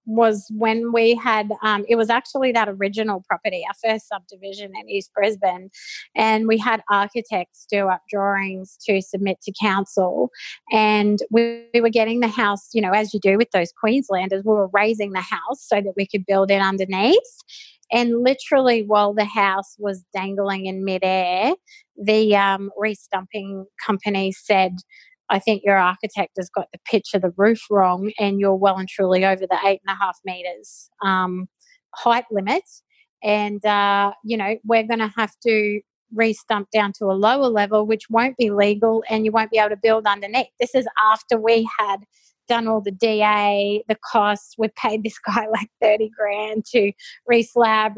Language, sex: English, female